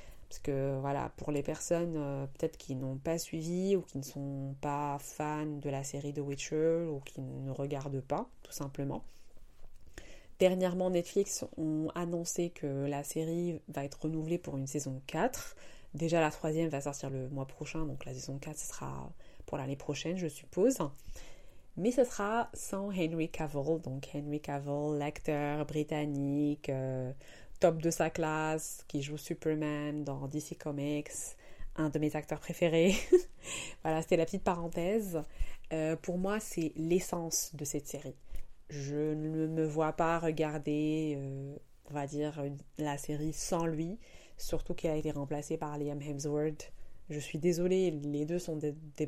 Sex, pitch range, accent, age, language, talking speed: female, 145-165 Hz, French, 30-49, French, 165 wpm